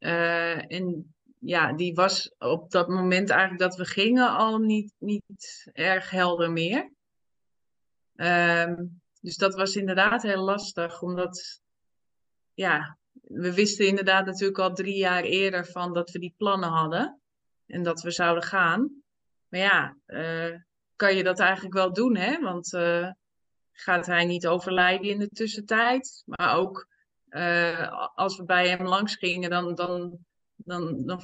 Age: 20-39